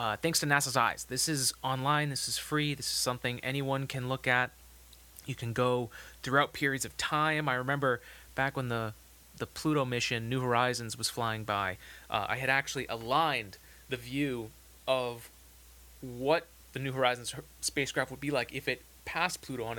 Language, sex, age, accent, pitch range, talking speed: English, male, 30-49, American, 105-140 Hz, 180 wpm